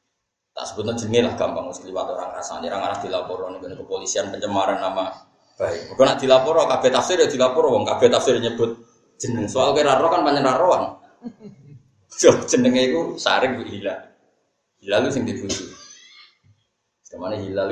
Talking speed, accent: 150 wpm, native